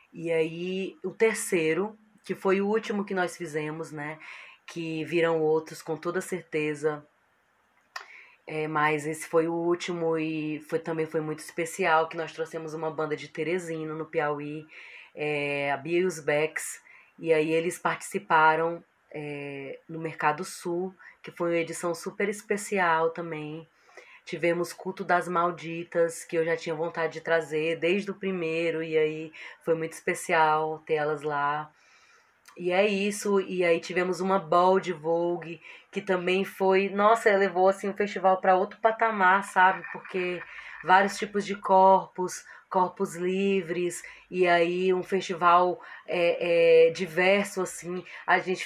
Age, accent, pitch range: 20-39, Brazilian, 160-190 Hz